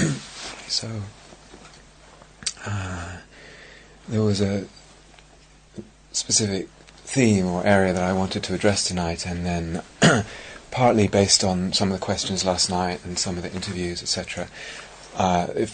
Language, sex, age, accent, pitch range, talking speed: English, male, 30-49, British, 85-100 Hz, 130 wpm